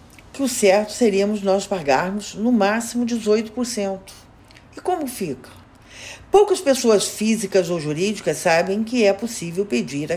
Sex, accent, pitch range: female, Brazilian, 160-230 Hz